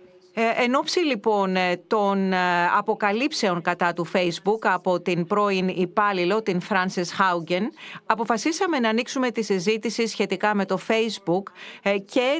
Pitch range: 180-230 Hz